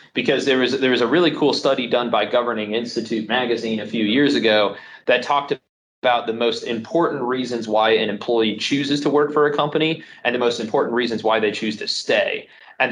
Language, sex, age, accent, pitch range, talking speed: English, male, 30-49, American, 110-145 Hz, 205 wpm